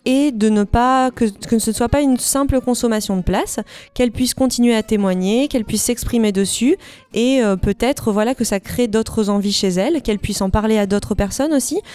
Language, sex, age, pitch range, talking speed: French, female, 20-39, 195-230 Hz, 210 wpm